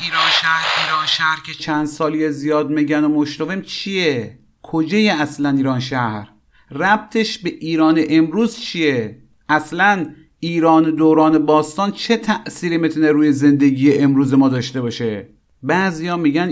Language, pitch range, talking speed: Persian, 130-175 Hz, 130 wpm